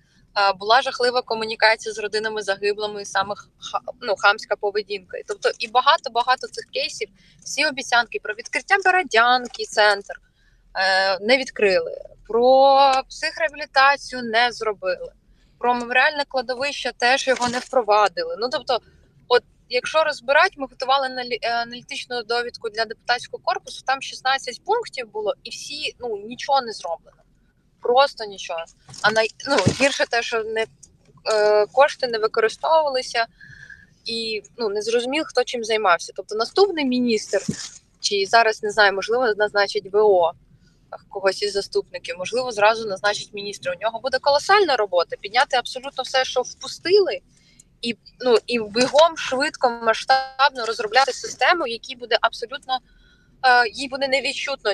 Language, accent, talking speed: Ukrainian, native, 130 wpm